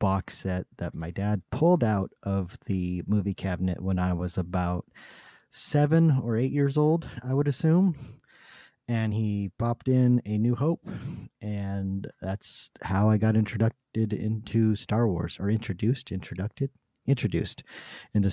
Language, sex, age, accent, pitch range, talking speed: English, male, 30-49, American, 100-140 Hz, 145 wpm